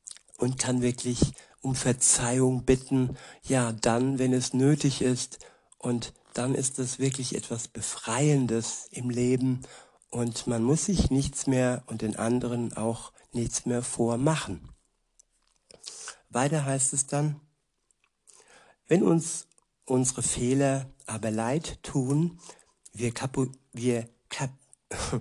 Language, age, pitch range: German, 60-79, 120-145 Hz